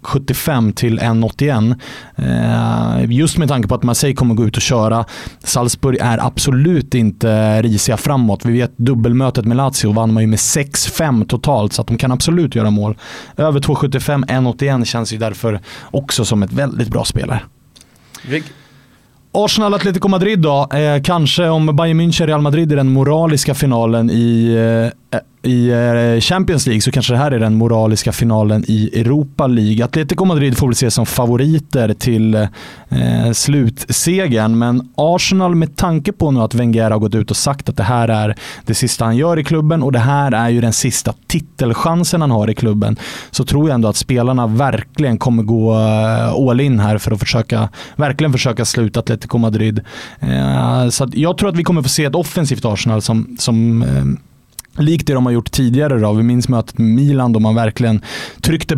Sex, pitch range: male, 115-145 Hz